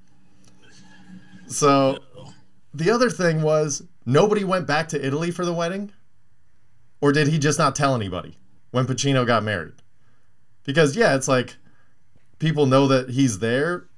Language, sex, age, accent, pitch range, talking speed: English, male, 30-49, American, 110-150 Hz, 140 wpm